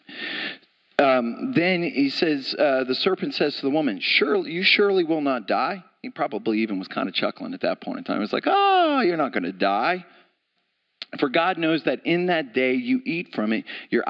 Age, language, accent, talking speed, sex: 40-59, English, American, 215 wpm, male